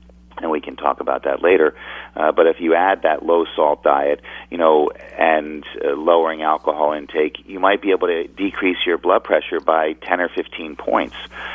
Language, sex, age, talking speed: English, male, 40-59, 190 wpm